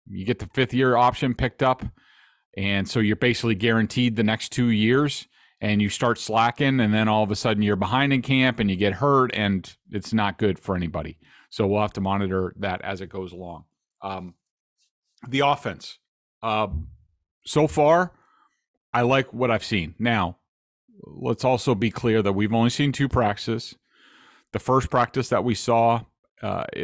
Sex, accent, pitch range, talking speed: male, American, 95-120 Hz, 175 wpm